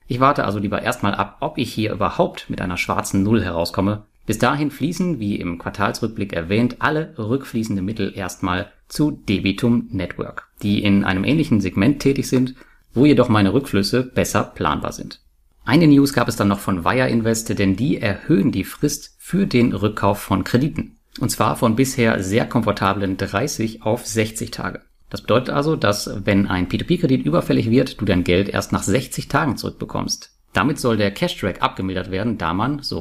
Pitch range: 100-125 Hz